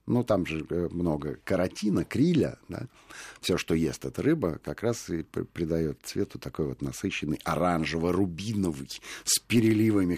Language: Russian